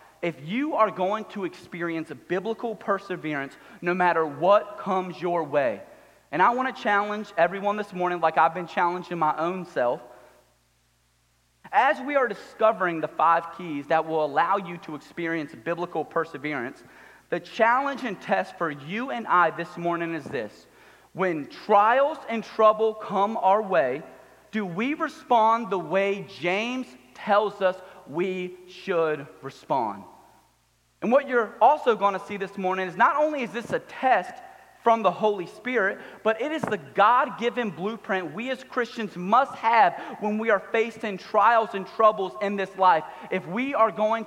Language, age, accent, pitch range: English, 30-49, American, 175-235 Hz